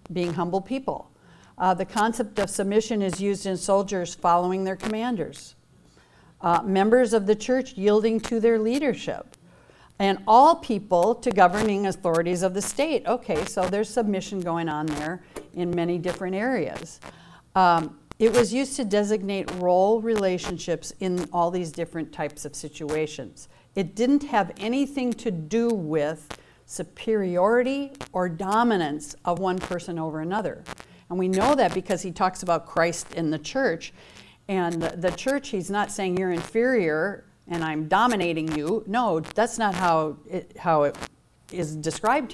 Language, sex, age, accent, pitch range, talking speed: English, female, 50-69, American, 170-220 Hz, 150 wpm